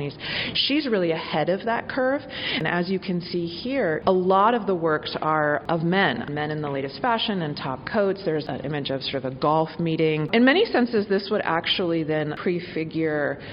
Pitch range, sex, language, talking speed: 140-175 Hz, female, English, 200 wpm